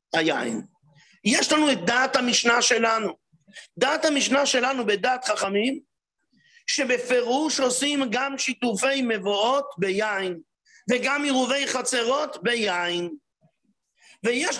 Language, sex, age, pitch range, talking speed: English, male, 50-69, 200-275 Hz, 95 wpm